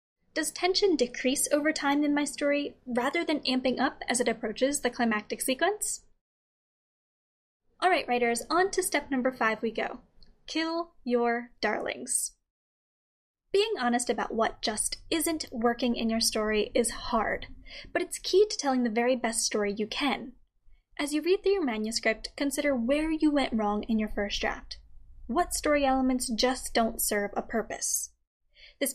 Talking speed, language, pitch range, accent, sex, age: 160 wpm, English, 230-300 Hz, American, female, 10-29